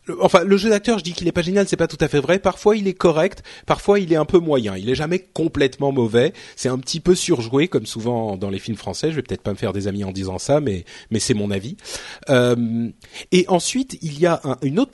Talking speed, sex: 270 wpm, male